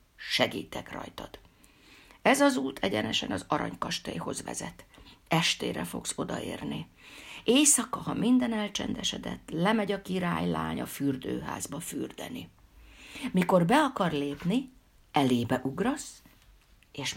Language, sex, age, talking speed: Hungarian, female, 50-69, 105 wpm